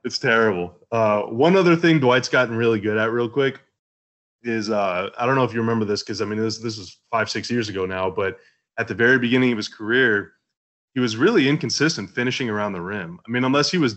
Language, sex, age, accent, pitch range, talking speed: English, male, 20-39, American, 110-130 Hz, 230 wpm